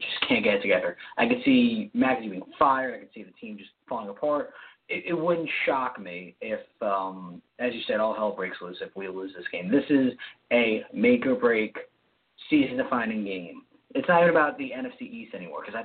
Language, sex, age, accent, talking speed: English, male, 30-49, American, 205 wpm